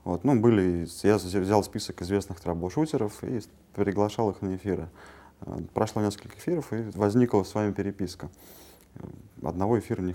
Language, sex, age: Russian, male, 30-49